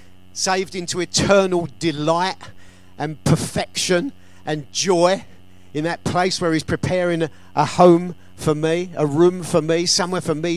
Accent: British